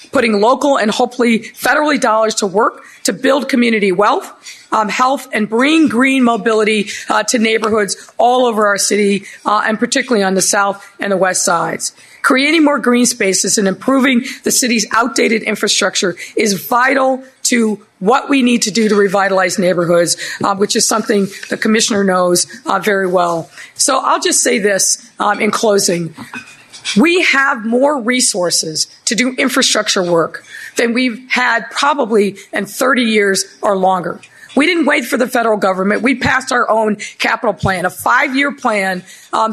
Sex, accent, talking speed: female, American, 165 wpm